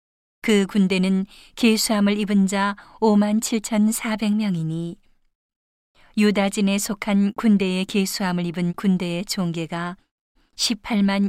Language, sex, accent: Korean, female, native